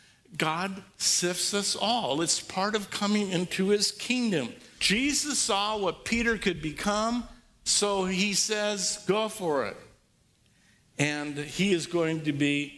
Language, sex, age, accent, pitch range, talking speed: English, male, 50-69, American, 150-205 Hz, 135 wpm